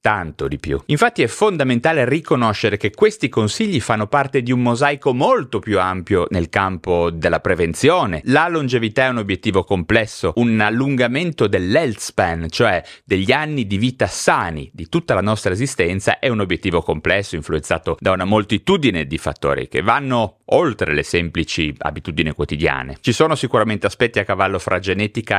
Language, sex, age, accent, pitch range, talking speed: Italian, male, 30-49, native, 90-120 Hz, 160 wpm